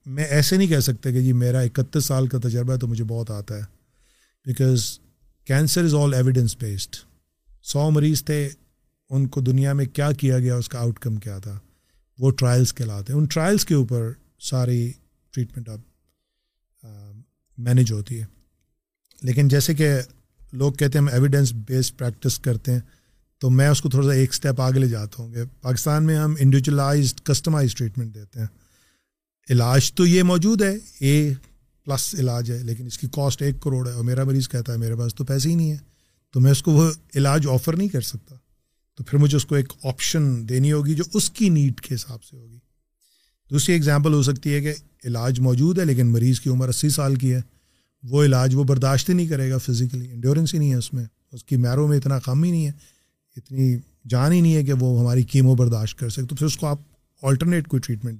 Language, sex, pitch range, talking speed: Urdu, male, 120-145 Hz, 190 wpm